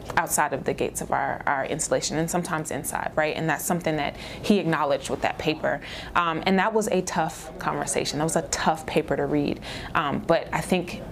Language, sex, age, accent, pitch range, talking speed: English, female, 20-39, American, 160-200 Hz, 210 wpm